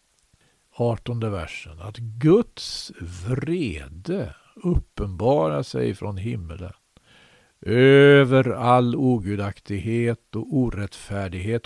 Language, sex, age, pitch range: Swedish, male, 60-79, 100-125 Hz